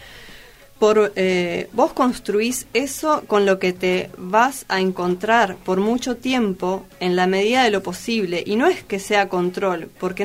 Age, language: 20-39, Spanish